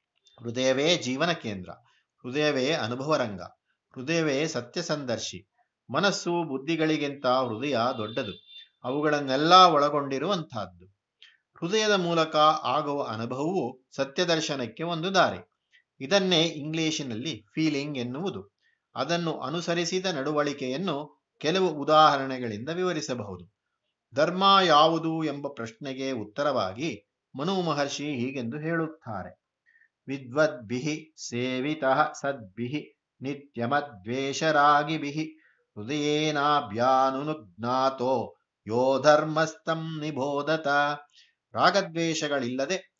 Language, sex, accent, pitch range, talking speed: Kannada, male, native, 130-160 Hz, 60 wpm